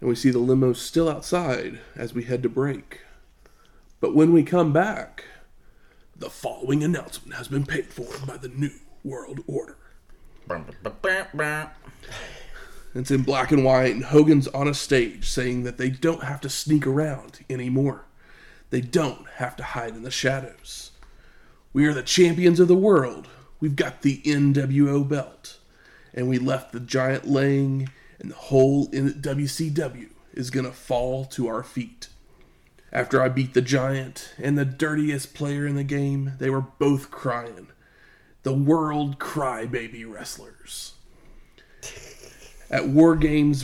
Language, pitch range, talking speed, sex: English, 130-150 Hz, 150 wpm, male